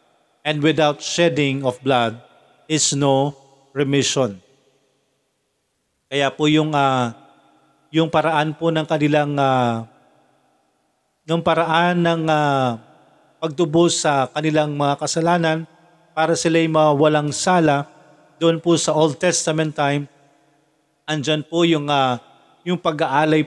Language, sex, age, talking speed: Filipino, male, 40-59, 115 wpm